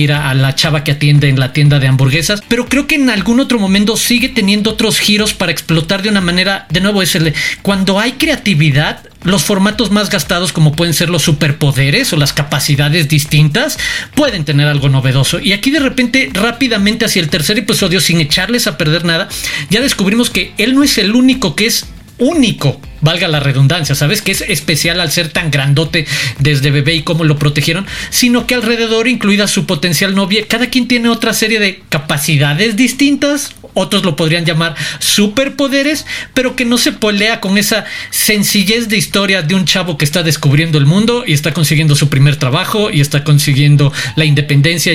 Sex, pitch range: male, 150-215 Hz